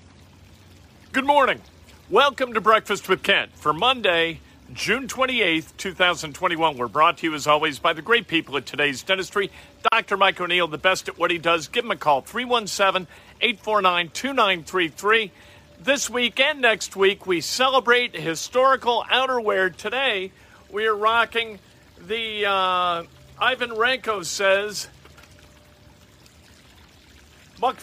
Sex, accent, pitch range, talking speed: male, American, 160-210 Hz, 125 wpm